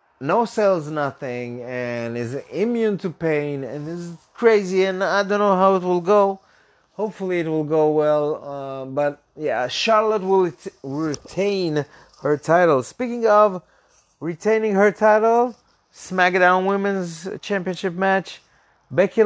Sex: male